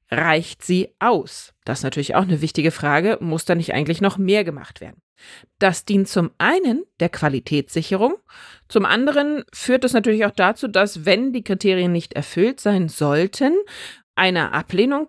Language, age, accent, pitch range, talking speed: German, 30-49, German, 170-230 Hz, 165 wpm